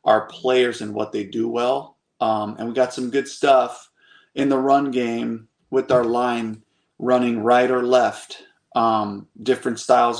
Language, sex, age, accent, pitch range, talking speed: English, male, 30-49, American, 110-135 Hz, 165 wpm